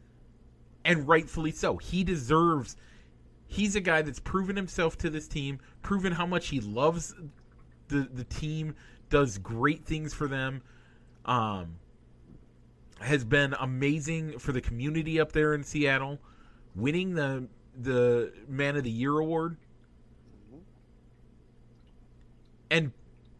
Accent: American